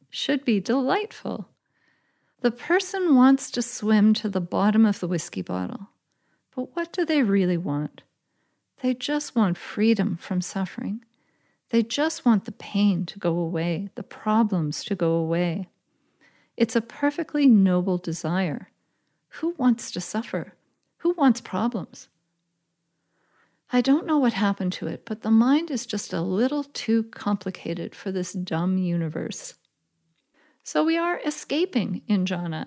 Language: English